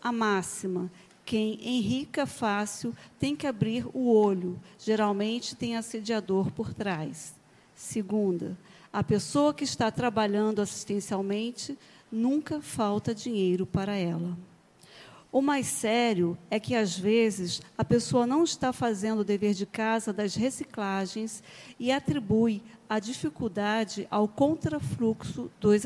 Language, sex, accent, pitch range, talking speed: Portuguese, female, Brazilian, 195-235 Hz, 120 wpm